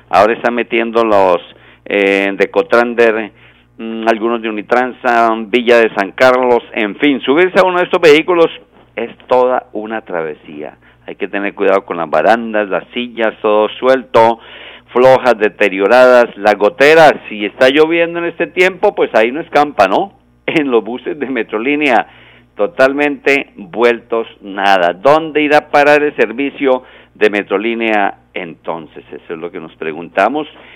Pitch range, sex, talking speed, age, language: 110-145 Hz, male, 145 wpm, 50-69, Spanish